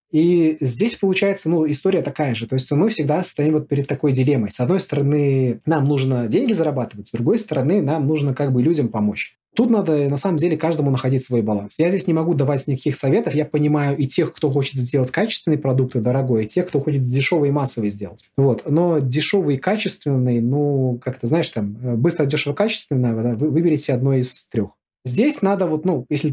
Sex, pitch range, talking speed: male, 130-160 Hz, 200 wpm